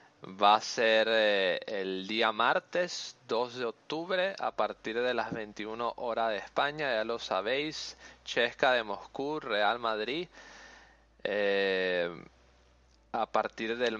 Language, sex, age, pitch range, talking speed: Spanish, male, 20-39, 95-120 Hz, 130 wpm